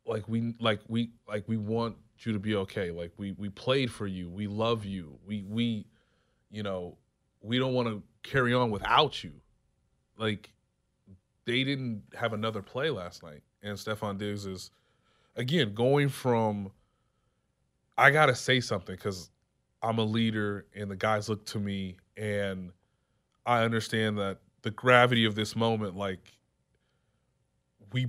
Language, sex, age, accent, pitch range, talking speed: English, male, 20-39, American, 105-125 Hz, 155 wpm